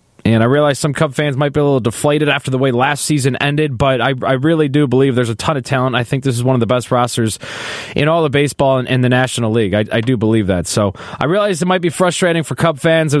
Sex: male